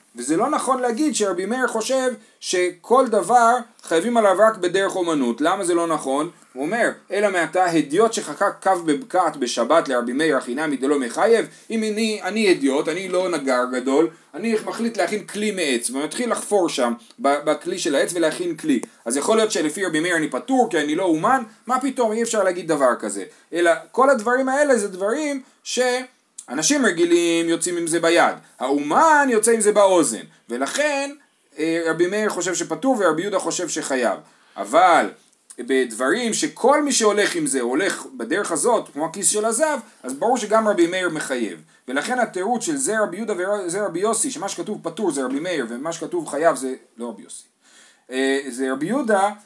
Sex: male